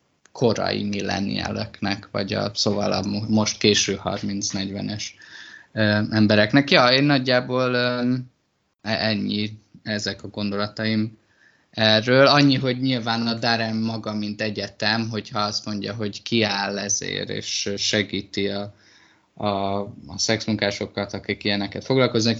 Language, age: Hungarian, 20-39